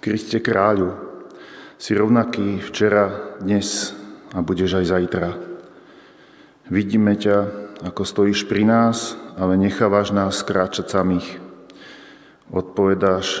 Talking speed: 100 wpm